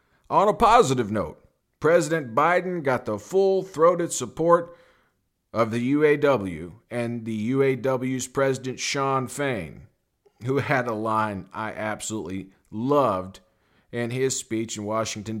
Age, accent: 50-69, American